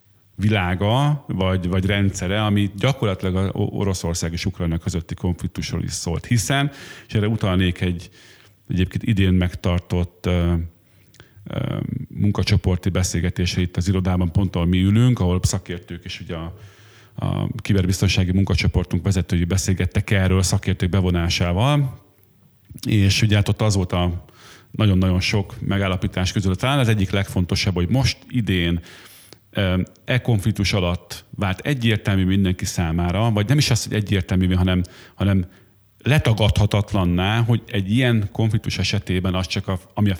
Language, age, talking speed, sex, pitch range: Hungarian, 40-59, 135 wpm, male, 90-110 Hz